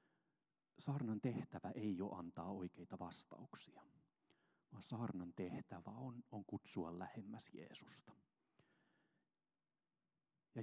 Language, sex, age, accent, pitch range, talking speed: Finnish, male, 40-59, native, 90-120 Hz, 90 wpm